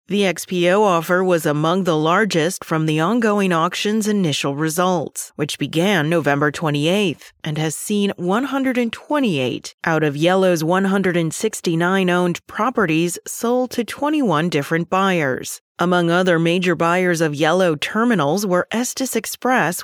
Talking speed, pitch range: 125 wpm, 160-200 Hz